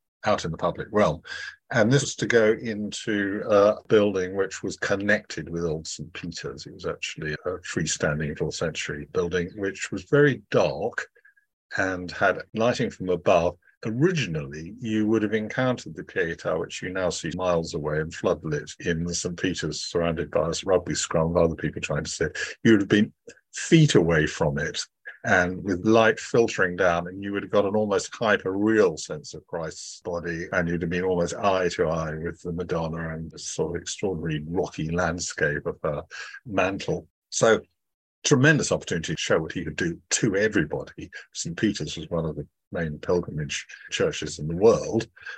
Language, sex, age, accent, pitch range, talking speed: English, male, 50-69, British, 85-110 Hz, 175 wpm